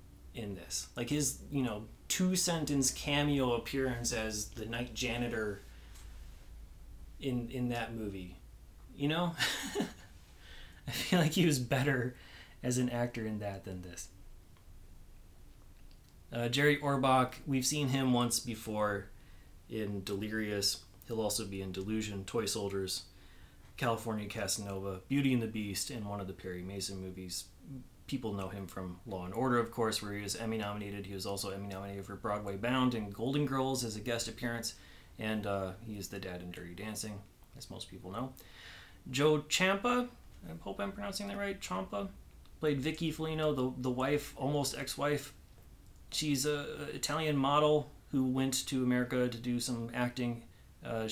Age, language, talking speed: 30-49, English, 155 wpm